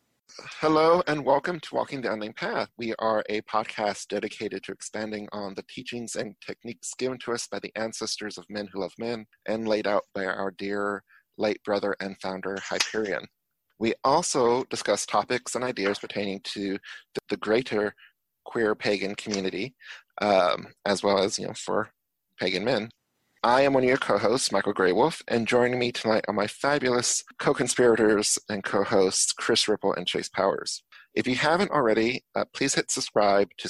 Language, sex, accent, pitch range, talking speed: English, male, American, 100-120 Hz, 170 wpm